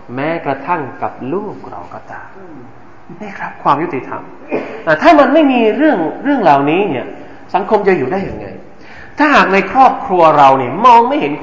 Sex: male